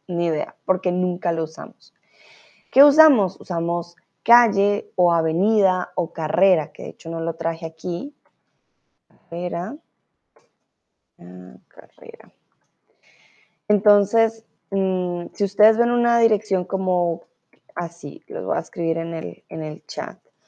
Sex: female